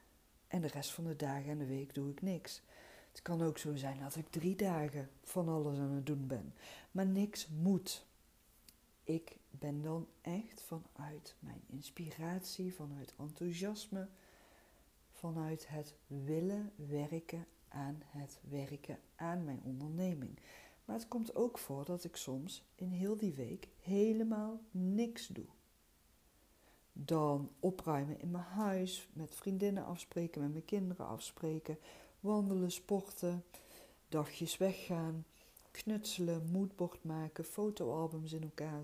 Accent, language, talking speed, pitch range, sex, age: Dutch, Dutch, 135 wpm, 145-185 Hz, female, 50-69